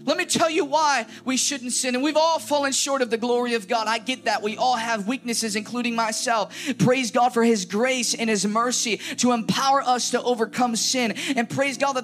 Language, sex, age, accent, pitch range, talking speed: English, male, 20-39, American, 255-300 Hz, 225 wpm